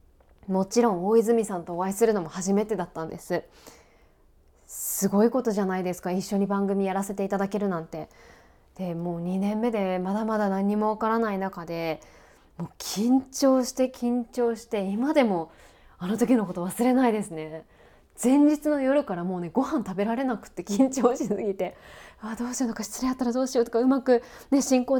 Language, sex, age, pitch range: Japanese, female, 20-39, 195-255 Hz